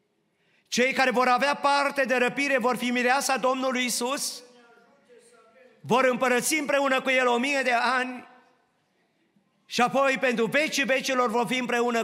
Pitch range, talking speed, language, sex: 215-270 Hz, 145 wpm, Romanian, male